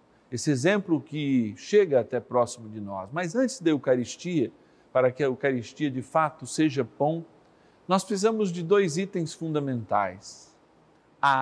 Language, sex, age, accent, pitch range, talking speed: Portuguese, male, 50-69, Brazilian, 120-175 Hz, 140 wpm